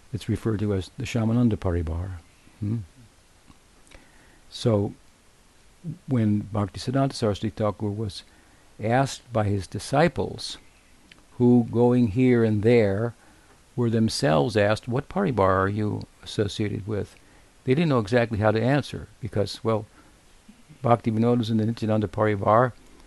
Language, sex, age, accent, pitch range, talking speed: English, male, 60-79, American, 100-115 Hz, 125 wpm